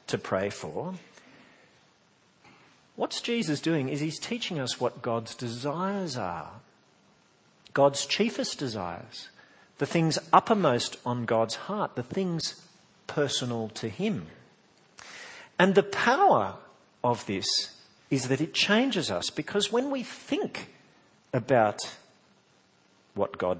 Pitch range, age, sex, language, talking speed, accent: 115-185 Hz, 50-69, male, English, 115 wpm, Australian